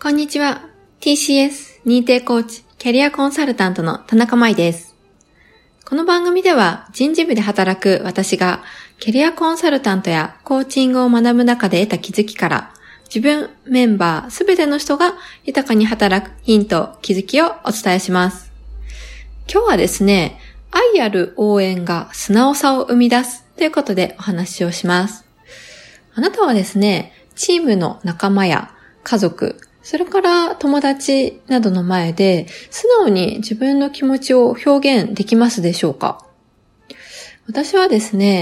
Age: 20-39